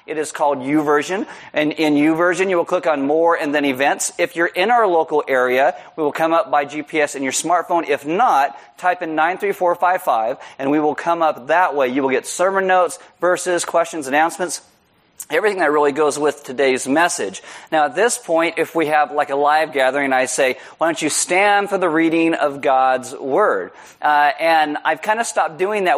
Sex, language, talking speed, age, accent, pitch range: male, English, 205 wpm, 40-59, American, 145-185 Hz